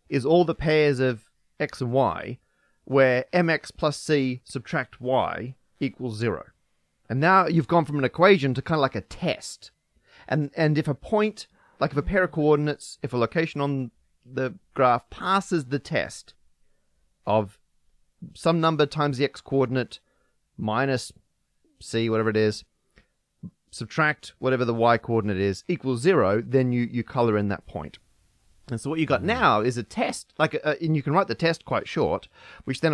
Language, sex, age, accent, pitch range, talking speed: English, male, 30-49, Australian, 115-155 Hz, 175 wpm